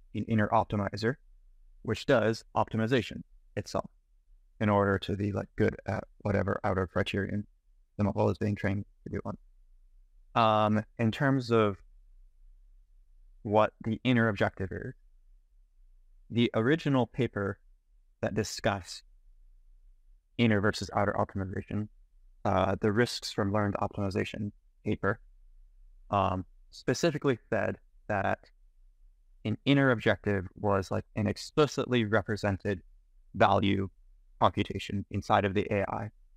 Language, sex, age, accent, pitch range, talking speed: English, male, 20-39, American, 95-110 Hz, 110 wpm